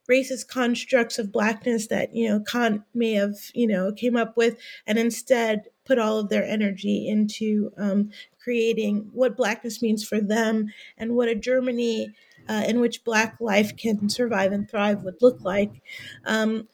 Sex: female